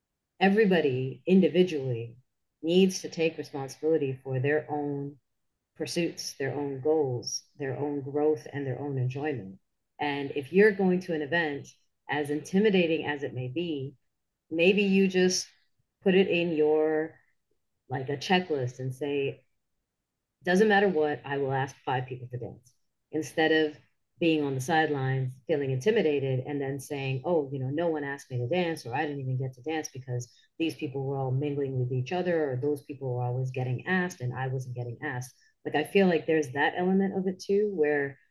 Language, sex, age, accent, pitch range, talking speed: English, female, 40-59, American, 130-160 Hz, 180 wpm